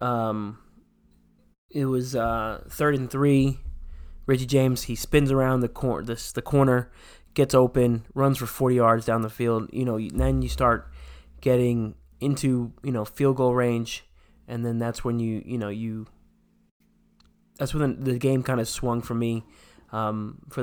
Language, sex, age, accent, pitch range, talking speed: English, male, 20-39, American, 115-130 Hz, 165 wpm